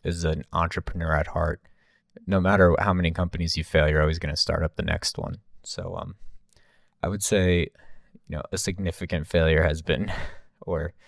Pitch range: 80-90 Hz